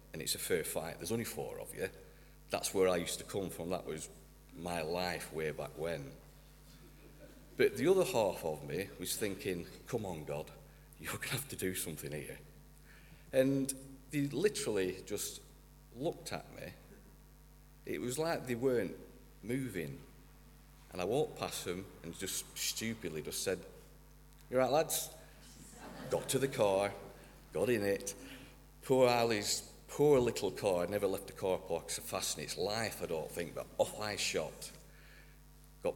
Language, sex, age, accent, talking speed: English, male, 40-59, British, 165 wpm